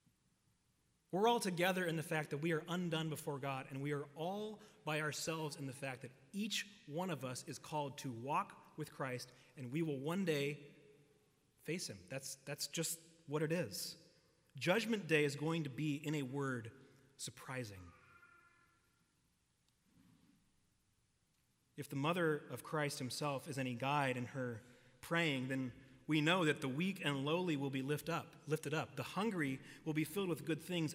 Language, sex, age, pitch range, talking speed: English, male, 30-49, 135-170 Hz, 175 wpm